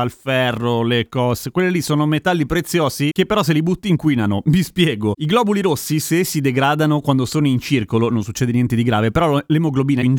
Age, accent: 30-49, native